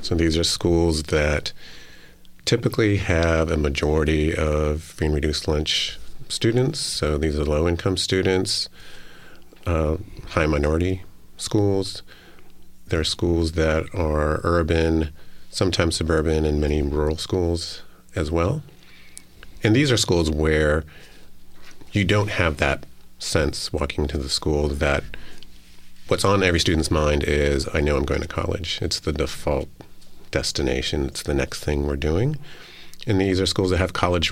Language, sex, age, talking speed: English, male, 40-59, 140 wpm